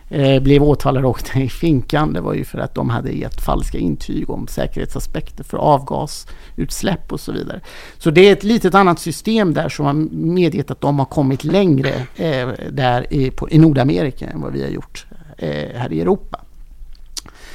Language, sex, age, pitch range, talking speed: Swedish, male, 50-69, 125-165 Hz, 170 wpm